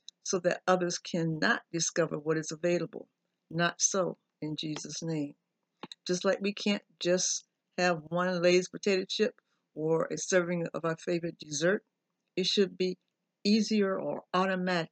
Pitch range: 170-200 Hz